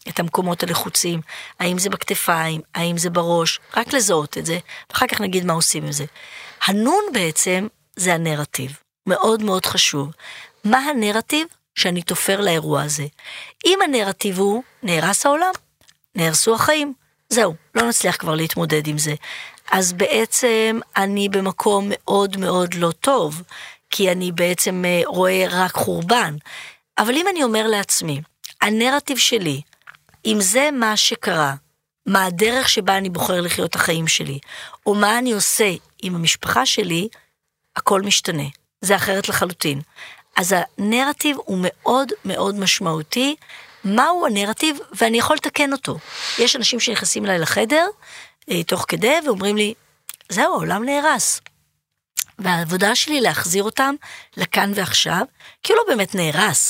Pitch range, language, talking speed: 170-235 Hz, Hebrew, 135 wpm